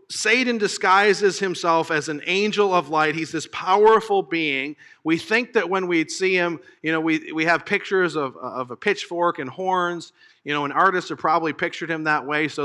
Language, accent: English, American